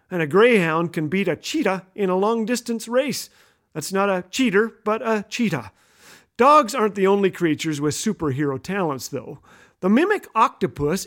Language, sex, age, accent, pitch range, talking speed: English, male, 40-59, American, 175-240 Hz, 165 wpm